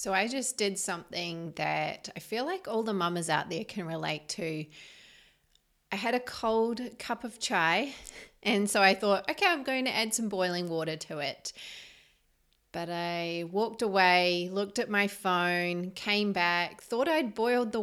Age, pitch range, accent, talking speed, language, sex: 30-49, 175-235 Hz, Australian, 175 wpm, English, female